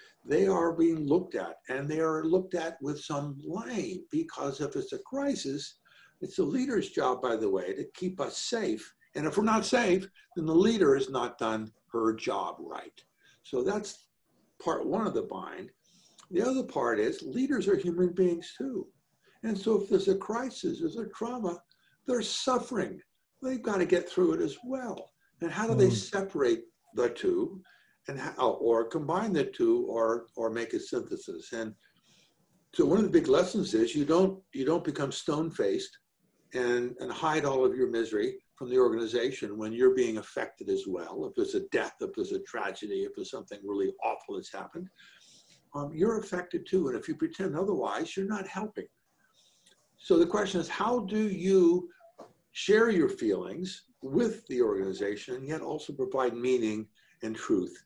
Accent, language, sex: American, English, male